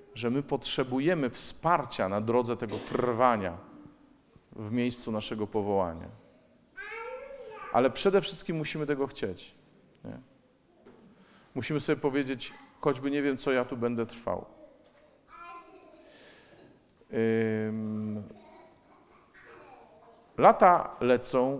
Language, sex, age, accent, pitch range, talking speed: Polish, male, 40-59, native, 120-170 Hz, 85 wpm